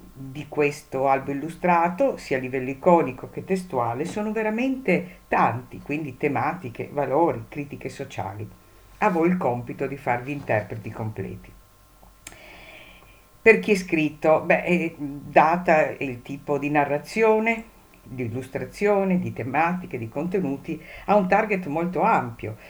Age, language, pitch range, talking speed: 50-69, Italian, 125-185 Hz, 125 wpm